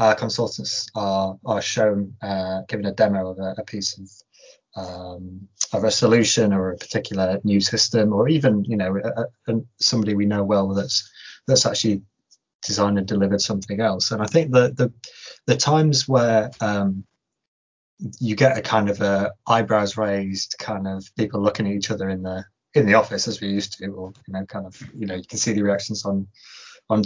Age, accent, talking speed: 20-39, British, 195 wpm